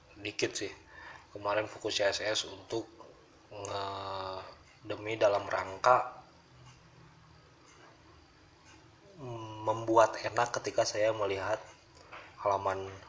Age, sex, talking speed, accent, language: 20-39, male, 75 wpm, native, Indonesian